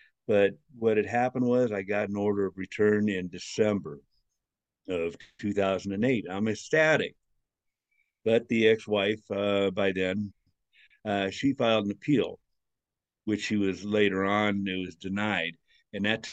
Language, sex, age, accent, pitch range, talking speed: English, male, 60-79, American, 100-115 Hz, 140 wpm